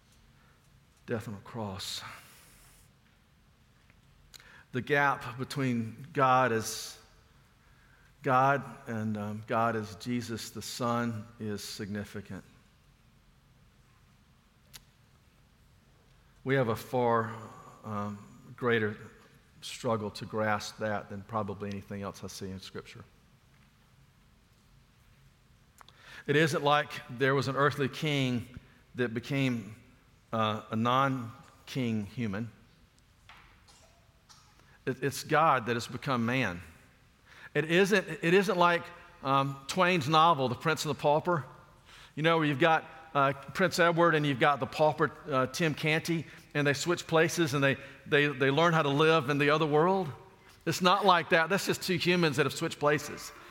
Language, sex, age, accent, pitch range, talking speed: English, male, 50-69, American, 115-160 Hz, 130 wpm